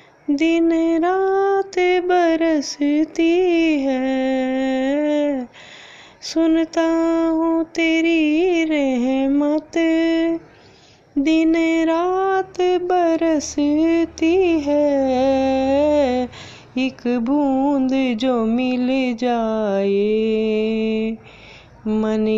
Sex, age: female, 20-39